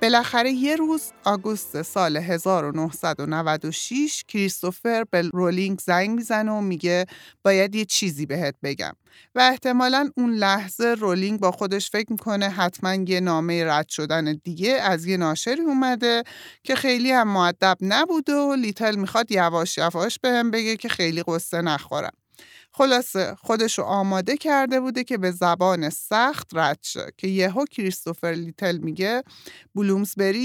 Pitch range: 175-230 Hz